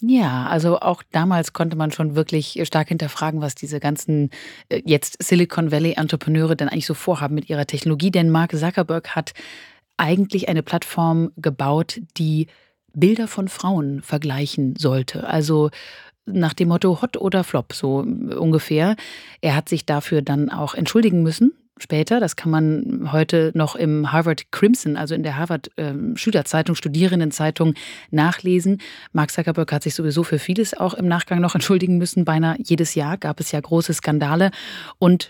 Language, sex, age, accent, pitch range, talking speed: German, female, 30-49, German, 155-180 Hz, 160 wpm